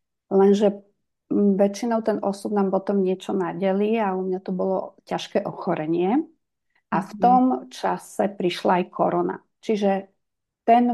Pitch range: 185-210 Hz